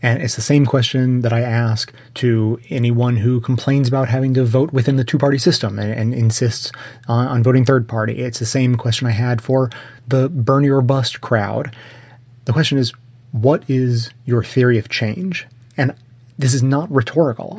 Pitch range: 120-140 Hz